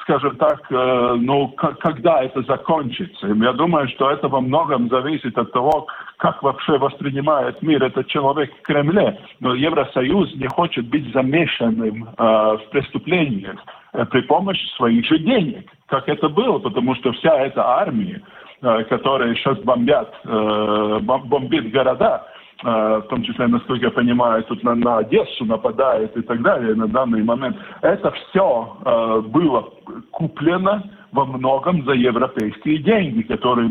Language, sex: Russian, male